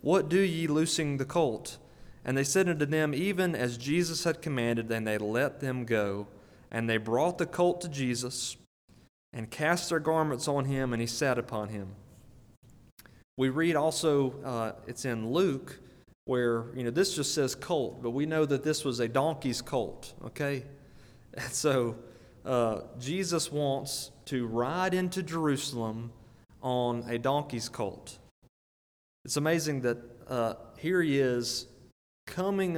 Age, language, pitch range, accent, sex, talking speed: 30-49, English, 120-155 Hz, American, male, 155 wpm